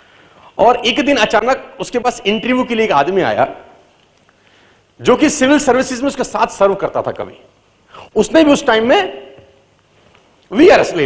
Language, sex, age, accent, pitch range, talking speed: Hindi, male, 40-59, native, 150-245 Hz, 165 wpm